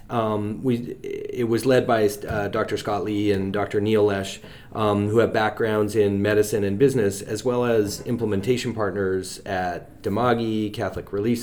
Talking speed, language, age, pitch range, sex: 165 wpm, English, 30-49, 100-120 Hz, male